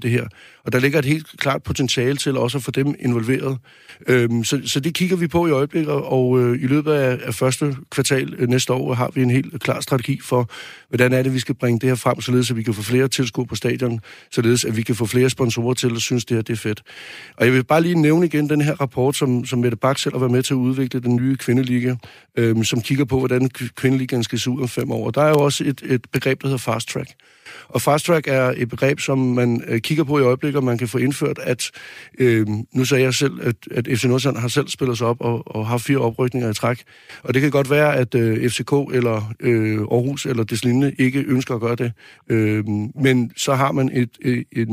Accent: native